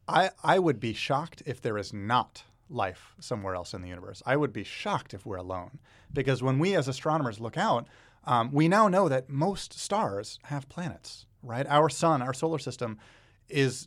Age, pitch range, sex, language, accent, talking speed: 30-49, 110-145 Hz, male, English, American, 195 wpm